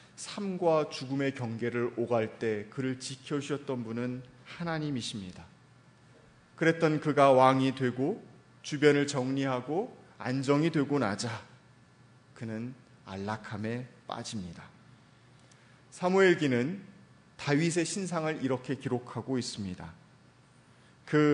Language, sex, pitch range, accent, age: Korean, male, 115-160 Hz, native, 30-49